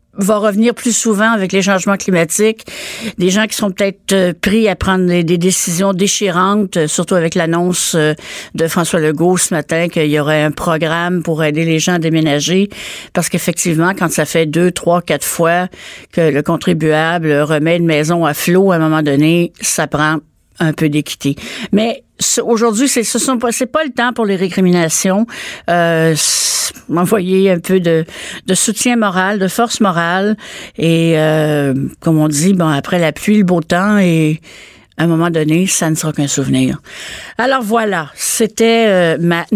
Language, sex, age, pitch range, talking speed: French, female, 50-69, 160-205 Hz, 175 wpm